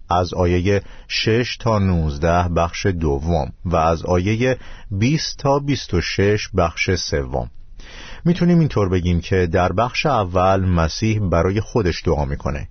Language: Persian